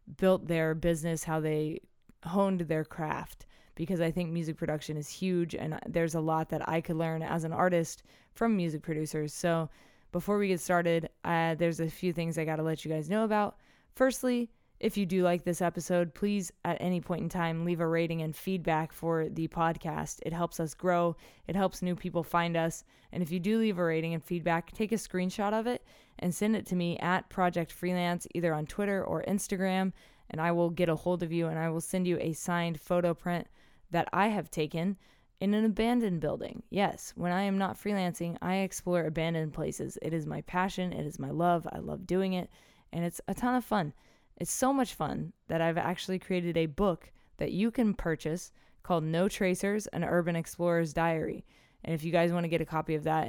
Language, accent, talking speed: English, American, 215 wpm